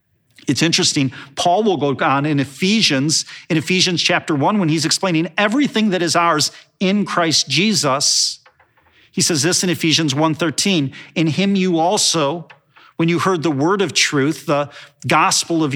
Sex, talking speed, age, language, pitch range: male, 160 wpm, 40-59, English, 140-180 Hz